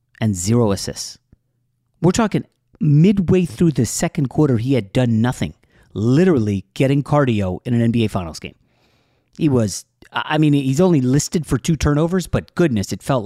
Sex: male